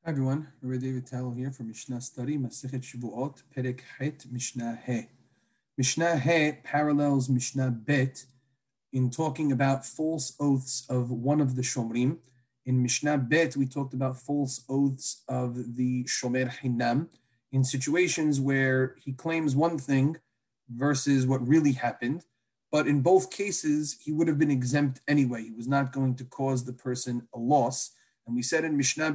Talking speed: 160 wpm